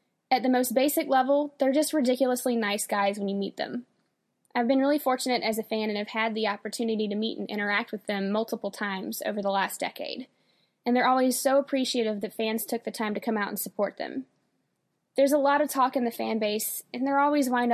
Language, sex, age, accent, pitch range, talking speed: English, female, 10-29, American, 210-260 Hz, 225 wpm